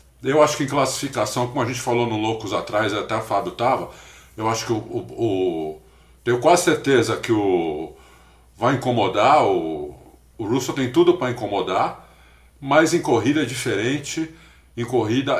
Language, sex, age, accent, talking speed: Portuguese, male, 50-69, Brazilian, 170 wpm